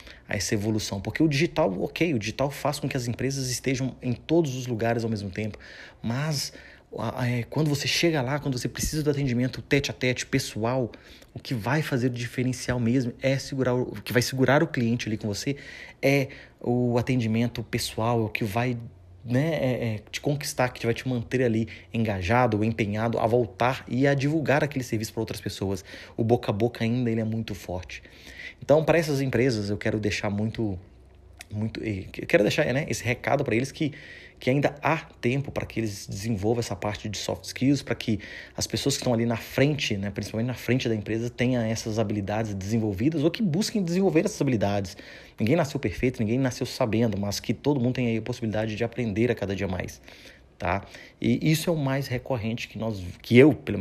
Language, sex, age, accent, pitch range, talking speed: Portuguese, male, 30-49, Brazilian, 110-130 Hz, 190 wpm